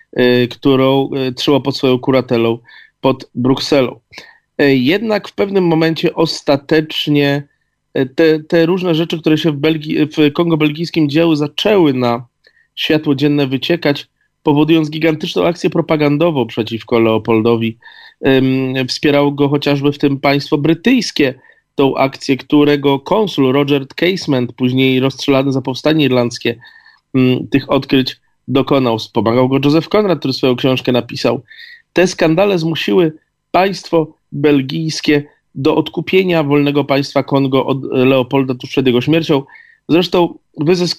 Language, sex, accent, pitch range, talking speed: Polish, male, native, 130-165 Hz, 120 wpm